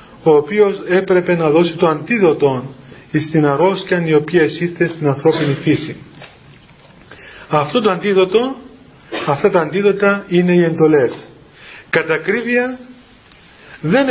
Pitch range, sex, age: 150-195 Hz, male, 40-59